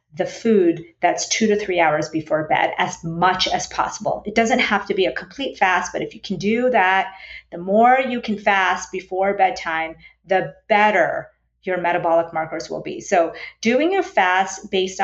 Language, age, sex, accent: English, 30-49, female, American